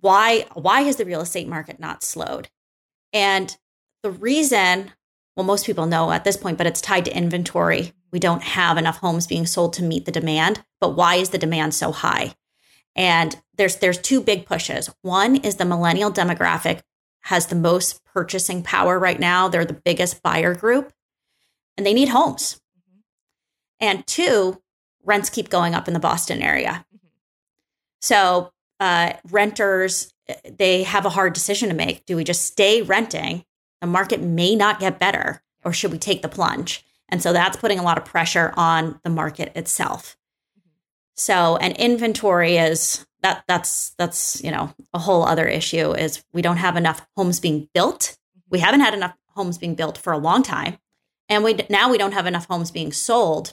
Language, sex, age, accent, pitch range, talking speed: English, female, 30-49, American, 170-200 Hz, 180 wpm